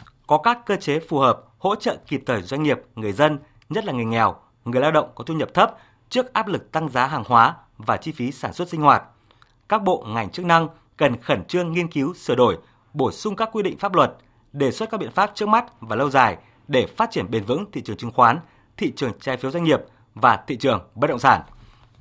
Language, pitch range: Vietnamese, 125-180 Hz